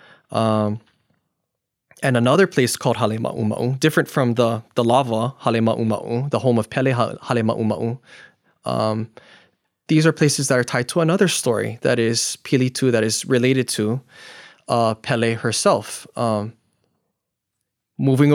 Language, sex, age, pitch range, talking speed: English, male, 20-39, 120-145 Hz, 130 wpm